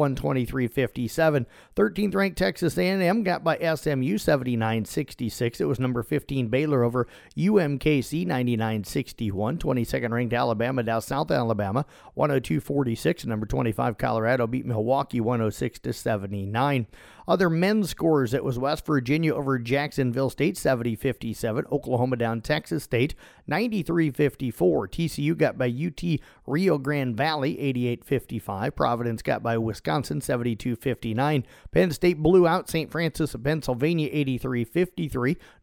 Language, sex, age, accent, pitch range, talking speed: English, male, 40-59, American, 120-155 Hz, 125 wpm